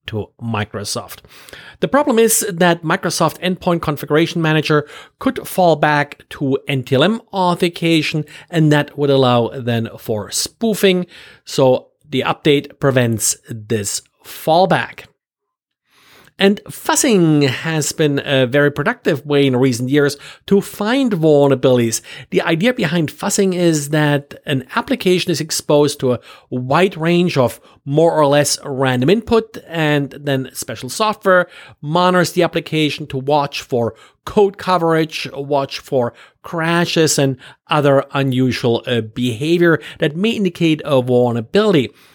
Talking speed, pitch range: 125 wpm, 135-180 Hz